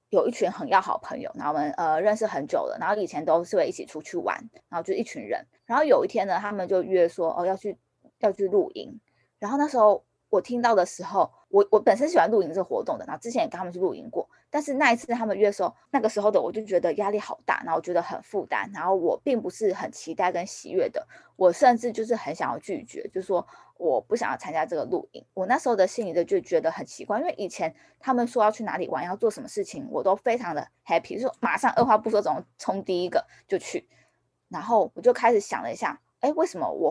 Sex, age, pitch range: female, 20-39, 185-285 Hz